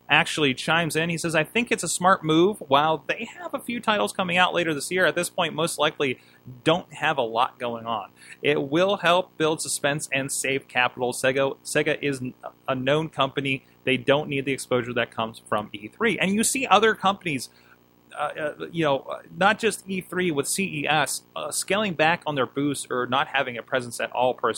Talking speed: 205 wpm